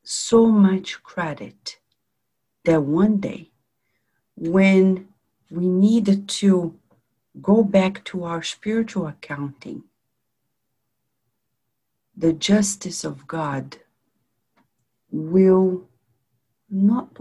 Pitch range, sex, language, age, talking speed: 125-190 Hz, female, English, 50-69, 75 wpm